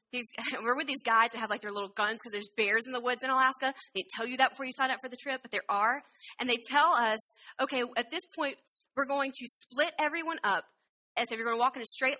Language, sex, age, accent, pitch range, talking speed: English, female, 20-39, American, 235-315 Hz, 280 wpm